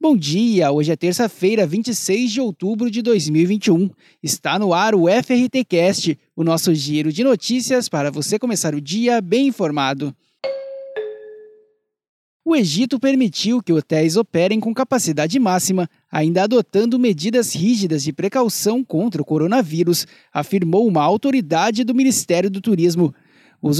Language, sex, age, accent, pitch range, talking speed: Portuguese, male, 20-39, Brazilian, 165-255 Hz, 135 wpm